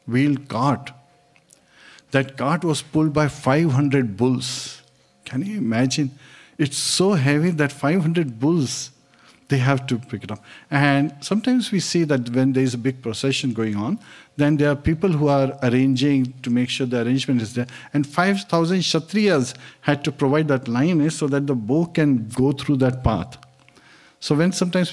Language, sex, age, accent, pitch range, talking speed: English, male, 50-69, Indian, 120-150 Hz, 170 wpm